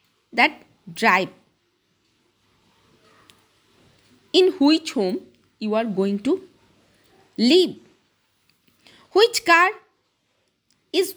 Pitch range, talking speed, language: 195-255 Hz, 70 wpm, Hindi